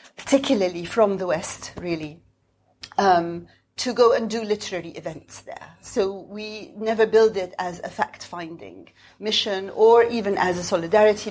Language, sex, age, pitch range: English, female, 40-59, 175-215 Hz